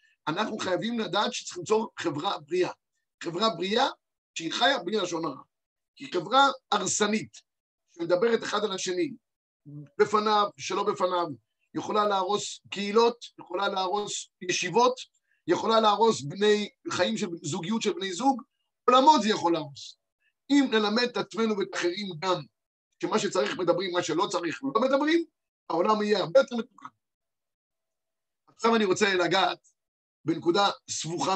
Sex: male